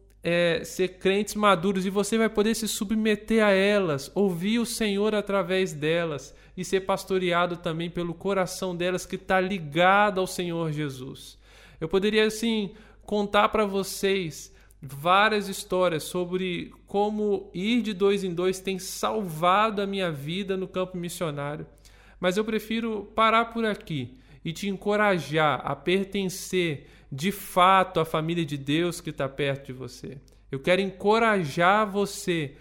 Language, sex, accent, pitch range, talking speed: Portuguese, male, Brazilian, 140-195 Hz, 145 wpm